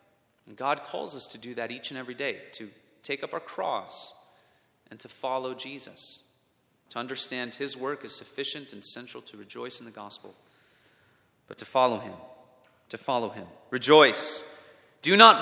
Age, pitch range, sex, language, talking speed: 30-49, 120-145 Hz, male, English, 165 wpm